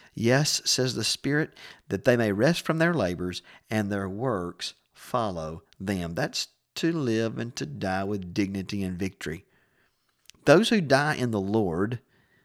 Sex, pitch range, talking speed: male, 95-125 Hz, 155 wpm